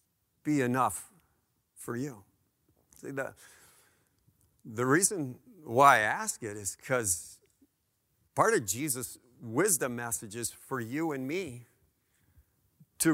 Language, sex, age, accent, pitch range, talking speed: English, male, 50-69, American, 115-160 Hz, 115 wpm